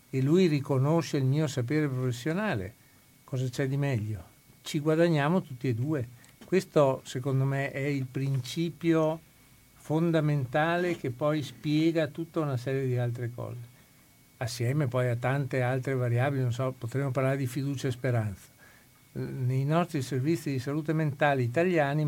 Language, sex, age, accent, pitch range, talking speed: Italian, male, 60-79, native, 125-155 Hz, 145 wpm